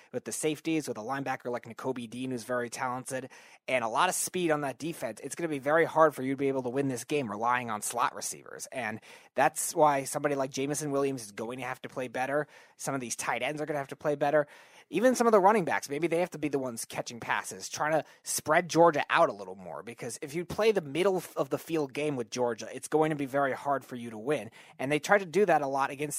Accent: American